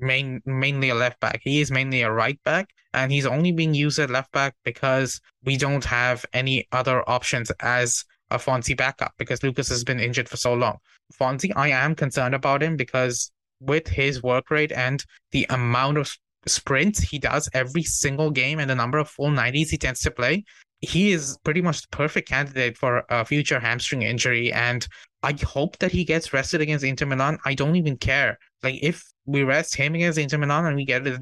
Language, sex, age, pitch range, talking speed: English, male, 20-39, 130-155 Hz, 200 wpm